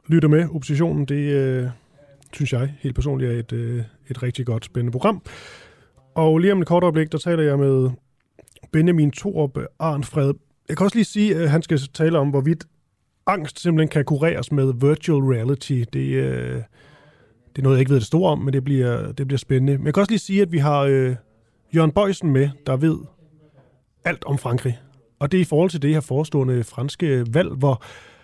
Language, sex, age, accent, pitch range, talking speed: Danish, male, 30-49, native, 130-165 Hz, 200 wpm